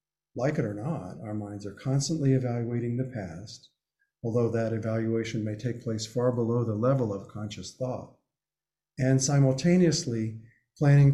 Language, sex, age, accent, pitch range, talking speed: English, male, 50-69, American, 115-145 Hz, 145 wpm